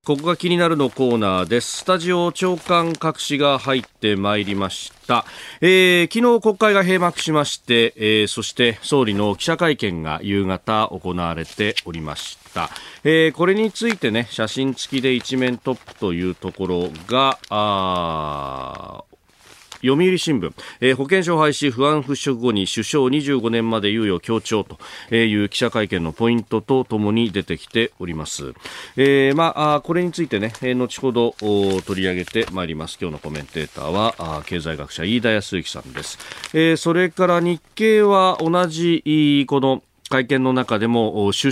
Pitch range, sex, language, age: 100-160 Hz, male, Japanese, 40-59